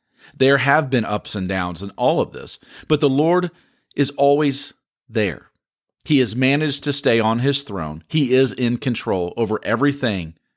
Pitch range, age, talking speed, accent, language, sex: 105-145 Hz, 50-69, 170 wpm, American, English, male